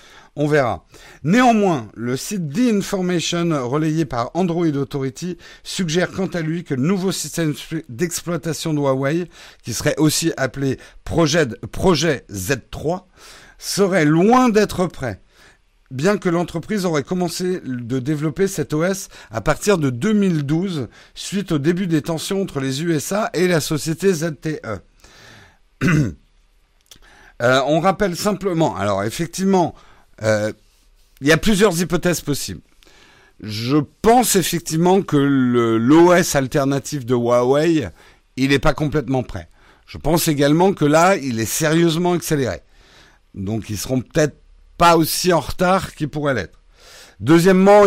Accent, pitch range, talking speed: French, 120-175 Hz, 130 wpm